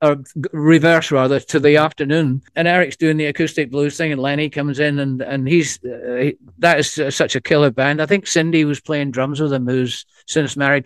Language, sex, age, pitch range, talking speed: English, male, 60-79, 135-165 Hz, 220 wpm